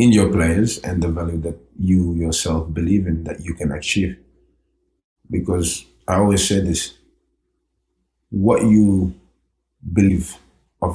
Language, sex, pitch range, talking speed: English, male, 80-105 Hz, 130 wpm